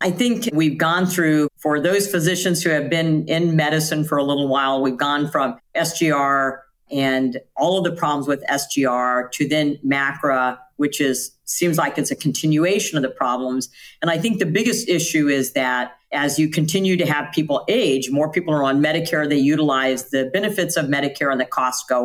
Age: 50-69